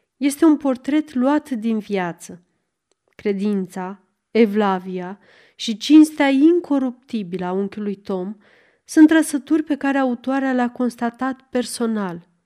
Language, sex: Romanian, female